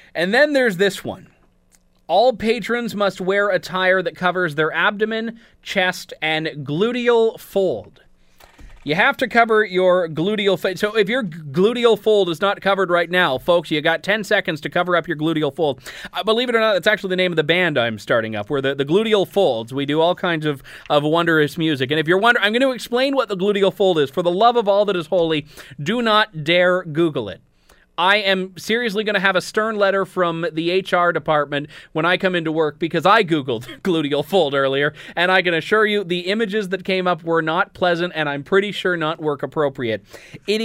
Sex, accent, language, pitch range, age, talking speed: male, American, English, 155-200 Hz, 30-49, 215 wpm